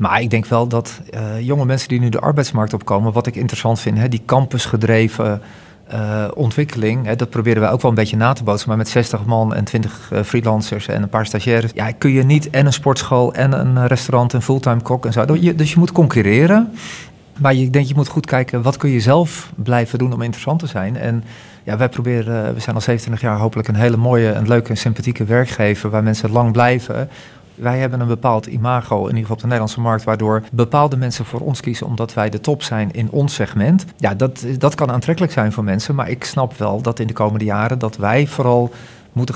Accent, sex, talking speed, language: Dutch, male, 235 wpm, Dutch